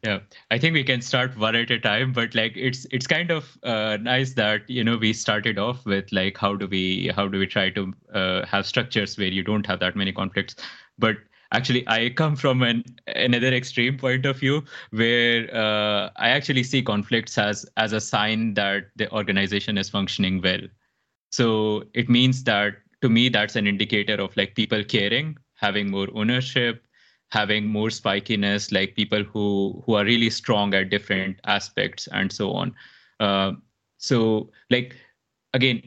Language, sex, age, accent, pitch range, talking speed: English, male, 20-39, Indian, 105-130 Hz, 180 wpm